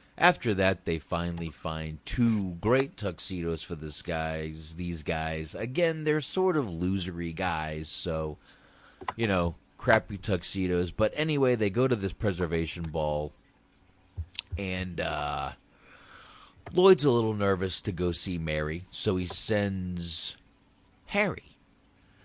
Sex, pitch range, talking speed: male, 85-100 Hz, 125 wpm